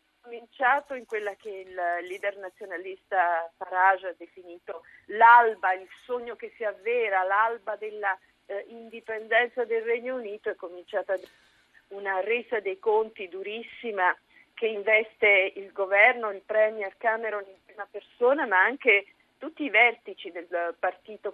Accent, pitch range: native, 185-225 Hz